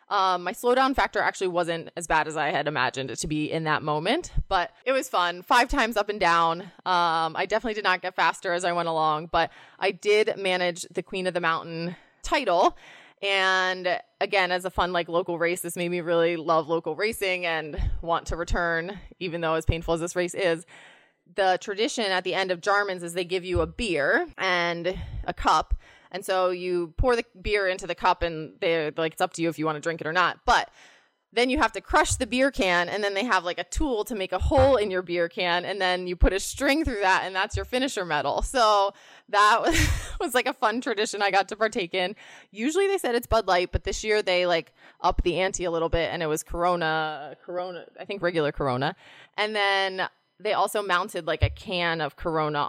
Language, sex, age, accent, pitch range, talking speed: English, female, 20-39, American, 170-200 Hz, 230 wpm